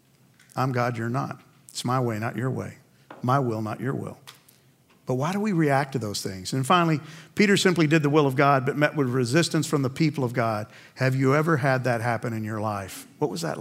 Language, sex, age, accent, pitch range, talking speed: English, male, 50-69, American, 120-150 Hz, 235 wpm